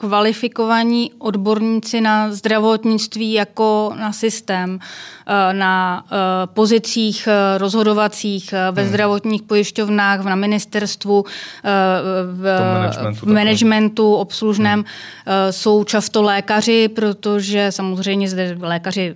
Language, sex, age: Czech, female, 20-39